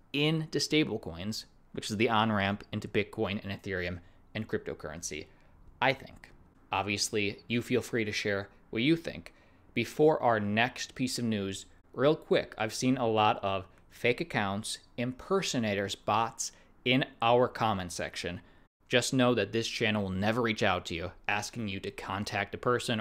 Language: English